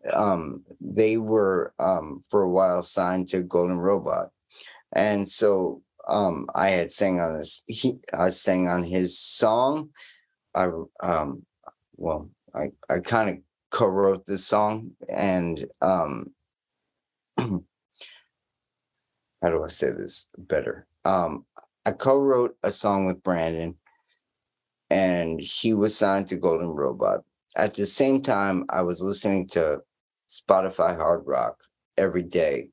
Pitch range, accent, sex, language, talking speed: 90-105 Hz, American, male, English, 130 wpm